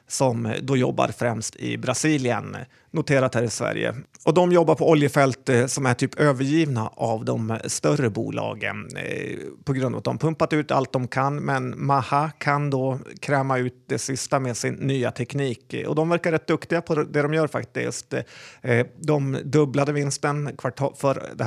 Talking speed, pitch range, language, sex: 170 wpm, 130-150 Hz, Swedish, male